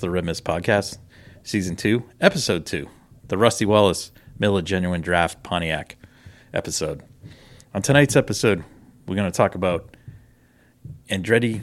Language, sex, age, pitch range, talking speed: English, male, 30-49, 90-110 Hz, 130 wpm